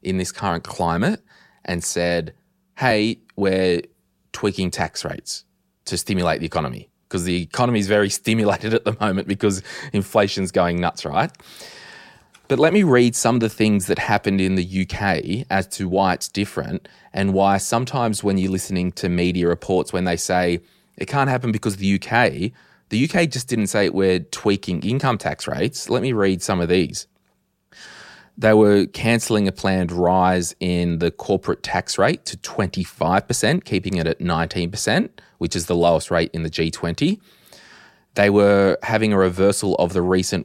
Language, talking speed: English, 170 wpm